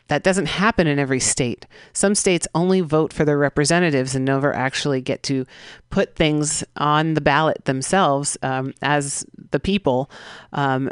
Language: English